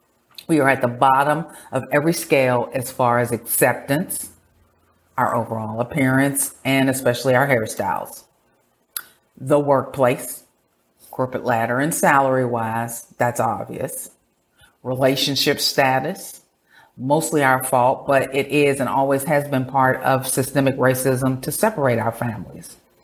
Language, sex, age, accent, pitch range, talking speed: English, female, 40-59, American, 125-155 Hz, 125 wpm